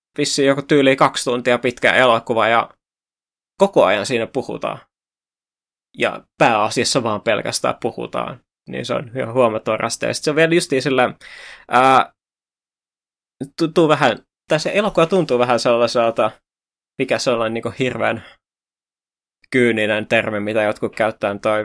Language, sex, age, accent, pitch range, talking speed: Finnish, male, 20-39, native, 115-145 Hz, 120 wpm